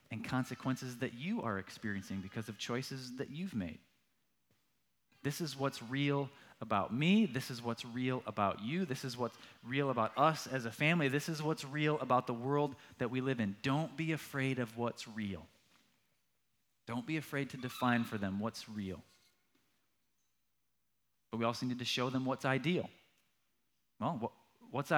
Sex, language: male, English